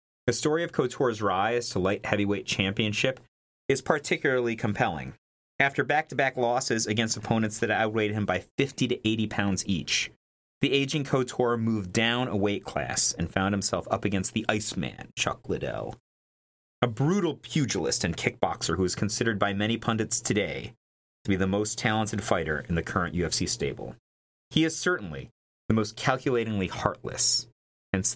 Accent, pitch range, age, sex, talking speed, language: American, 90-125 Hz, 40-59, male, 160 wpm, English